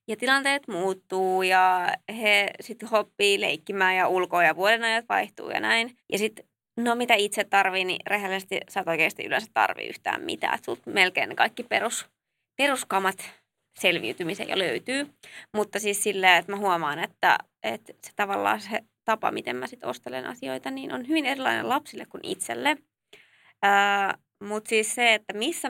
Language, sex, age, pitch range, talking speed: Finnish, female, 20-39, 190-260 Hz, 155 wpm